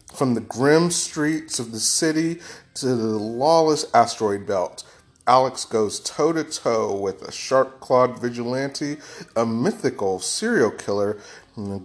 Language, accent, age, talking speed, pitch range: English, American, 30-49, 125 wpm, 110-150 Hz